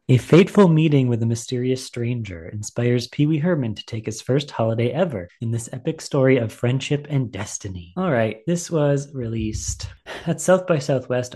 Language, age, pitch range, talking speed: English, 30-49, 110-150 Hz, 180 wpm